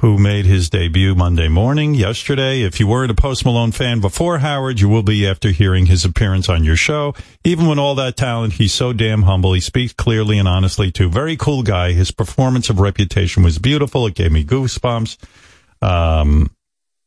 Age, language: 50-69, English